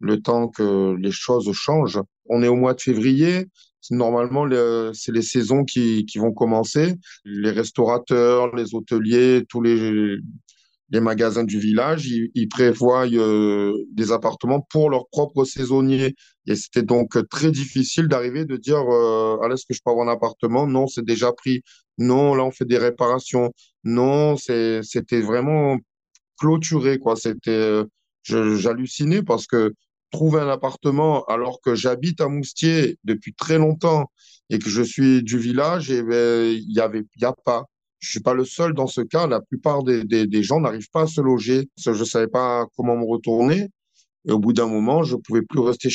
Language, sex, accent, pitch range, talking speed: French, male, French, 115-135 Hz, 185 wpm